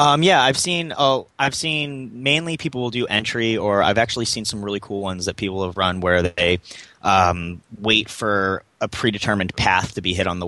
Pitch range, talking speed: 85-105 Hz, 210 wpm